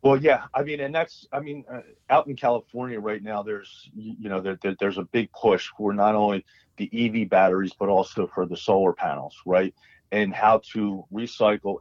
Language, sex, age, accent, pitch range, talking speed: English, male, 40-59, American, 95-110 Hz, 205 wpm